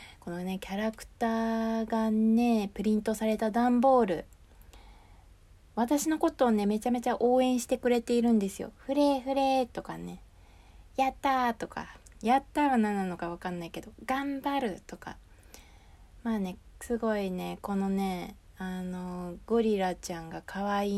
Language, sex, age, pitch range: Japanese, female, 20-39, 165-230 Hz